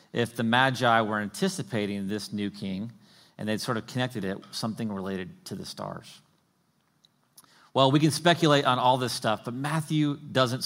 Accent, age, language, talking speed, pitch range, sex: American, 40-59, English, 175 wpm, 105-145 Hz, male